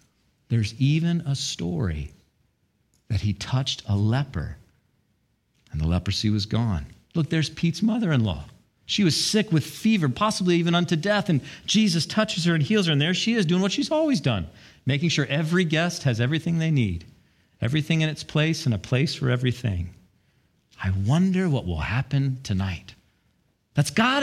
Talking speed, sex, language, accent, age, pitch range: 175 wpm, male, English, American, 50-69, 115-190 Hz